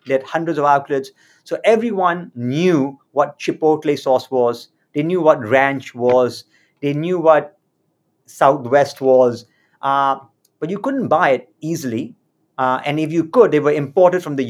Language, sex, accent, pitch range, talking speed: English, male, Indian, 135-175 Hz, 155 wpm